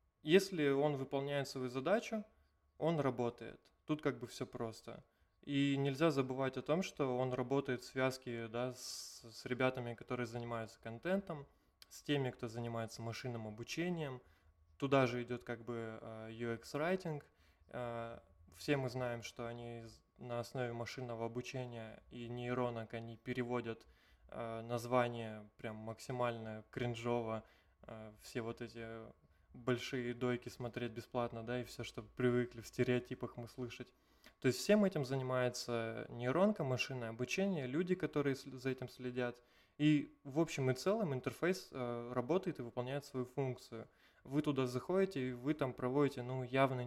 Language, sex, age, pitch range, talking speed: Russian, male, 20-39, 120-135 Hz, 140 wpm